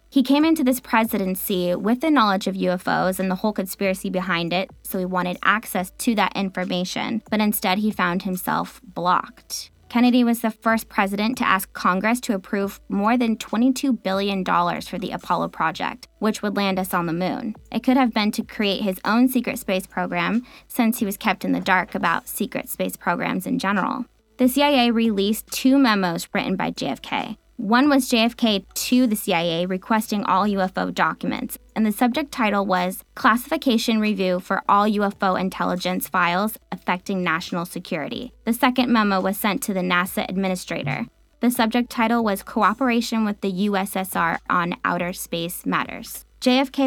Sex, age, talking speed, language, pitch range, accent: female, 20-39, 170 wpm, English, 190-235 Hz, American